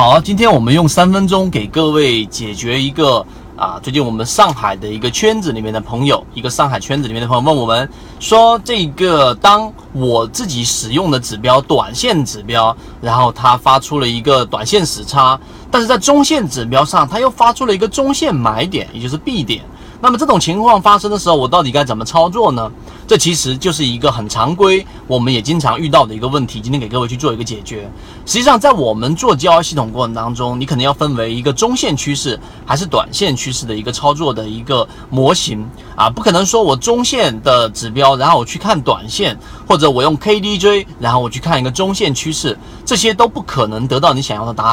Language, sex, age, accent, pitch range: Chinese, male, 30-49, native, 120-190 Hz